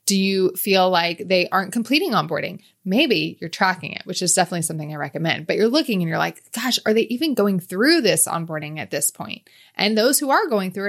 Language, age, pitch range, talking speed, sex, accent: English, 20-39, 165-205 Hz, 225 wpm, female, American